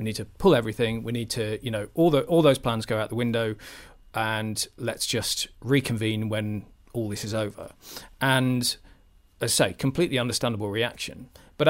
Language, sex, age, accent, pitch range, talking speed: English, male, 40-59, British, 110-140 Hz, 185 wpm